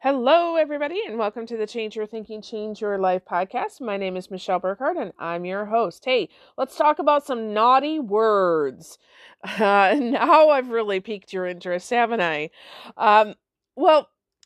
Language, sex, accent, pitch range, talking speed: English, female, American, 190-260 Hz, 165 wpm